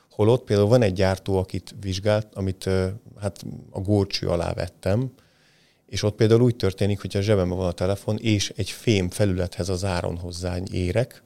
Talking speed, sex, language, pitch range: 175 wpm, male, Hungarian, 90-110 Hz